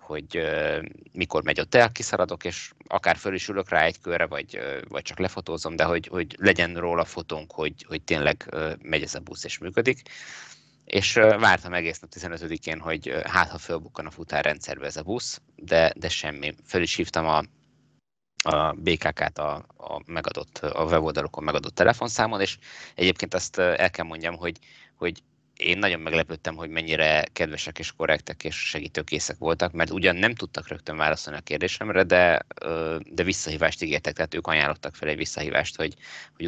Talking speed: 175 wpm